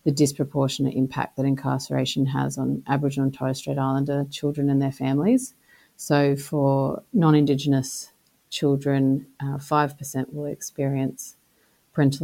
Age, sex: 30-49, female